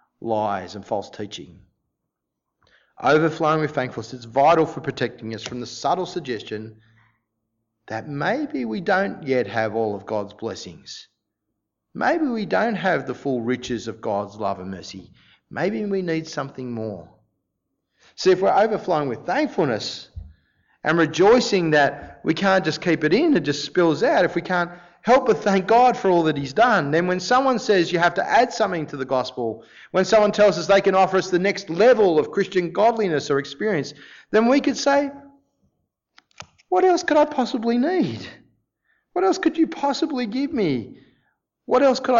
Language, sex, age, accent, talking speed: English, male, 30-49, Australian, 175 wpm